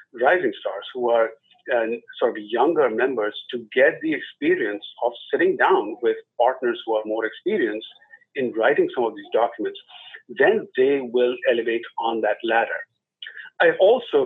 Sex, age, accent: male, 50-69, Indian